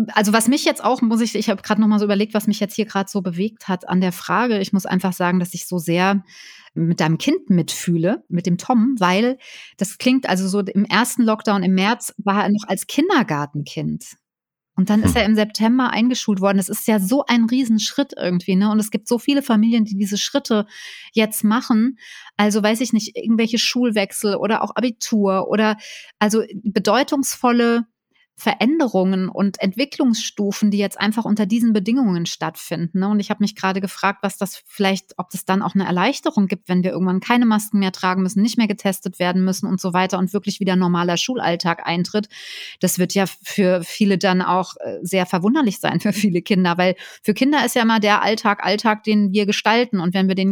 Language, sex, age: German, female, 30-49